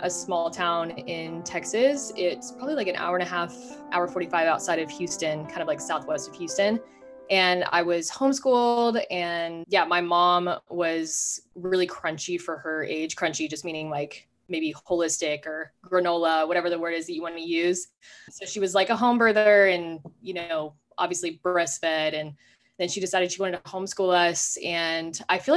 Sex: female